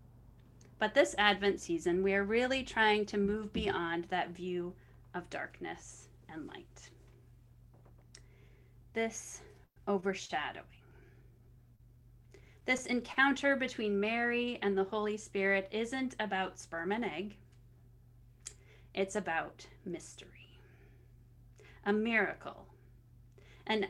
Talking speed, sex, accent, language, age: 95 wpm, female, American, English, 30-49